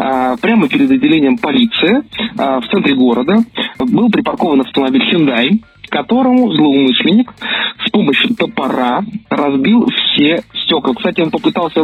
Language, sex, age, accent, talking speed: Russian, male, 20-39, native, 110 wpm